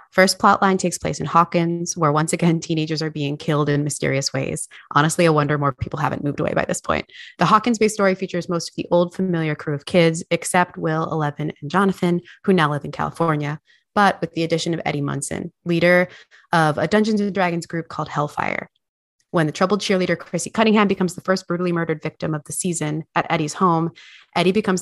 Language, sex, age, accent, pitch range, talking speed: English, female, 20-39, American, 150-180 Hz, 210 wpm